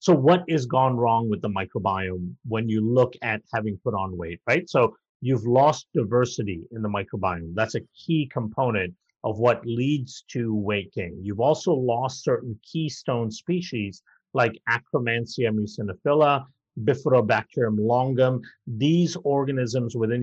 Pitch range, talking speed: 110-135 Hz, 140 wpm